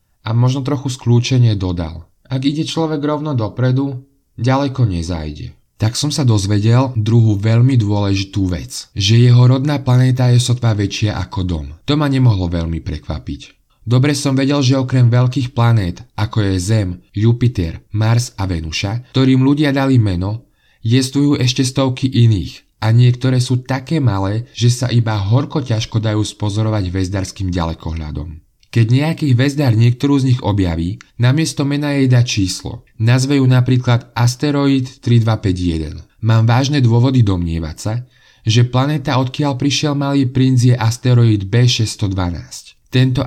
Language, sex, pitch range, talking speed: Slovak, male, 105-130 Hz, 140 wpm